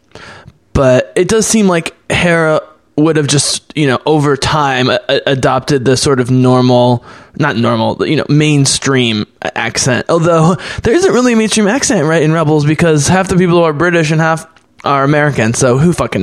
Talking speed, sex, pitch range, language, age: 180 wpm, male, 125-155 Hz, English, 20-39